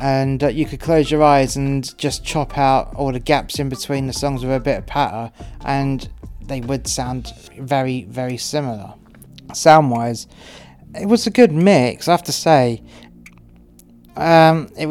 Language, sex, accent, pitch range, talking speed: English, male, British, 125-155 Hz, 175 wpm